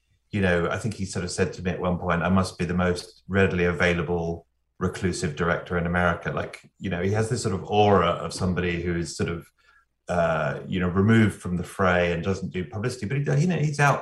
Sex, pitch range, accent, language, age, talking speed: male, 90-115 Hz, British, English, 30-49, 240 wpm